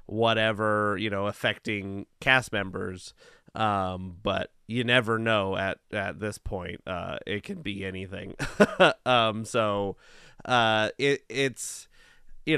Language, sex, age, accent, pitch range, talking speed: English, male, 30-49, American, 105-135 Hz, 120 wpm